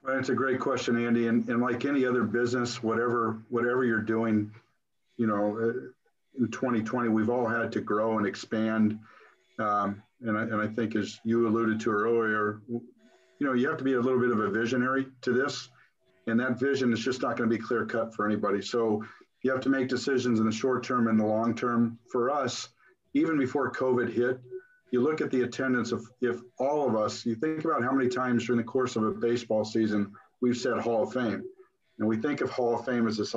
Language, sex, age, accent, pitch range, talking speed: English, male, 50-69, American, 110-125 Hz, 220 wpm